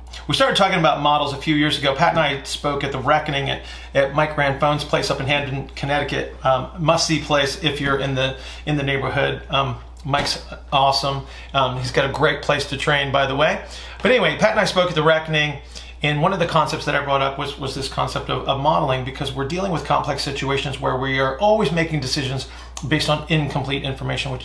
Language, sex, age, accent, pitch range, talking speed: English, male, 40-59, American, 135-150 Hz, 225 wpm